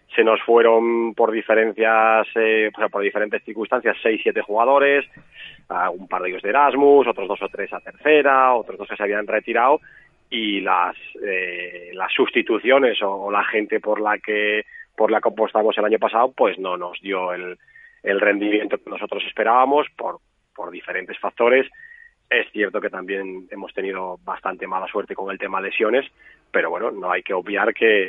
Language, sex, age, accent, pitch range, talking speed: Spanish, male, 30-49, Spanish, 100-130 Hz, 180 wpm